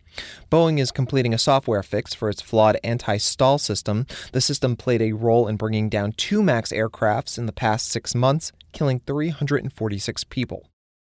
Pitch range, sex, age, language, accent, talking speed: 105-135 Hz, male, 30-49, English, American, 165 wpm